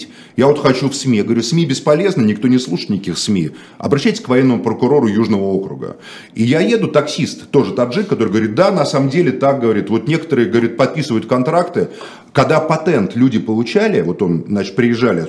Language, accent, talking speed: Russian, native, 180 wpm